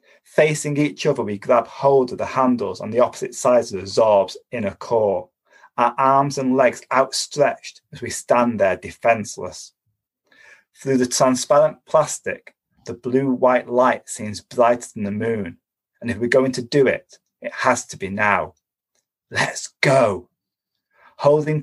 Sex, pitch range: male, 120-145 Hz